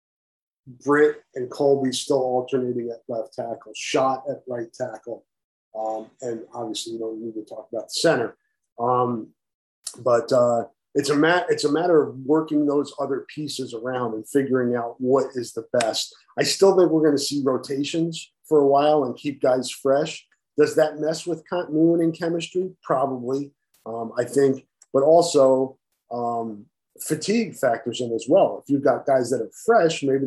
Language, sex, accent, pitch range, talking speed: English, male, American, 120-150 Hz, 175 wpm